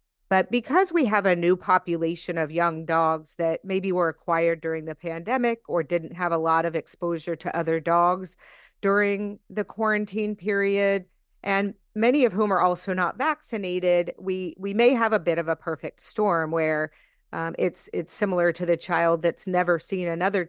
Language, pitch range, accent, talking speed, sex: English, 165-195 Hz, American, 180 wpm, female